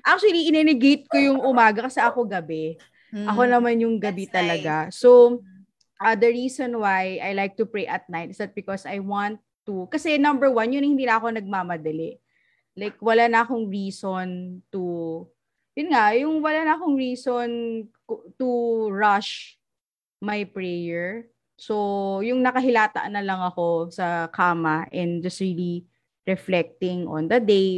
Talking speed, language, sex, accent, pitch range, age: 155 wpm, Filipino, female, native, 180-240 Hz, 20-39